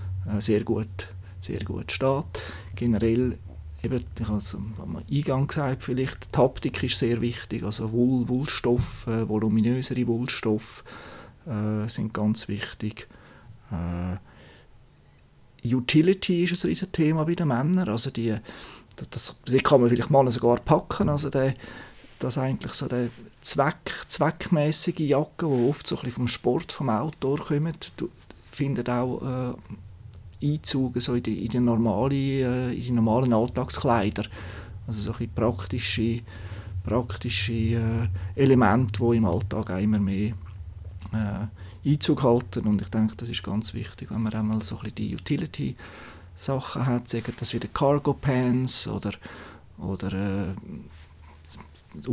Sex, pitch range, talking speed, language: male, 100-125 Hz, 130 wpm, German